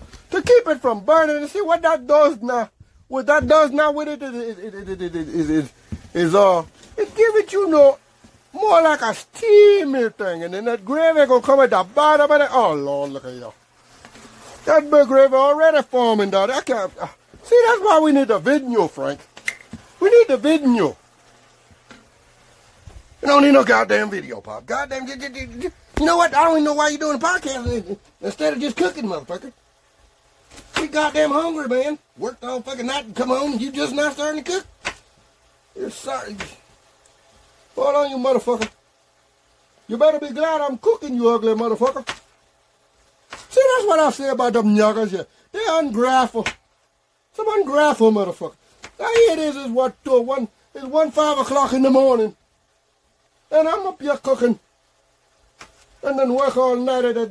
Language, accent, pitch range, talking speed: English, American, 240-305 Hz, 180 wpm